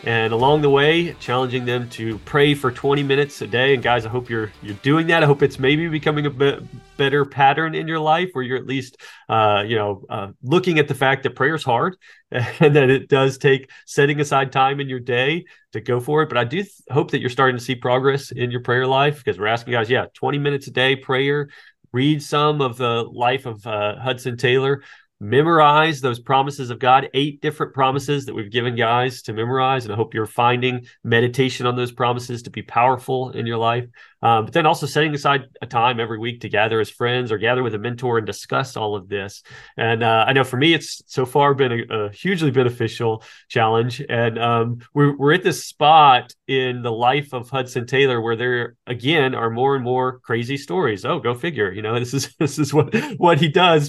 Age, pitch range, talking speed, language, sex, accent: 30-49, 120-145 Hz, 225 wpm, English, male, American